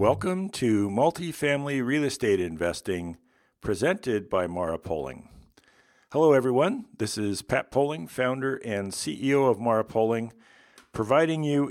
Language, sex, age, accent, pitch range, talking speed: English, male, 50-69, American, 100-130 Hz, 125 wpm